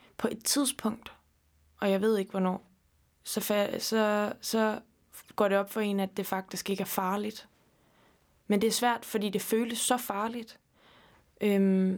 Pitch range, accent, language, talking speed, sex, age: 195-220 Hz, native, Danish, 160 wpm, female, 20-39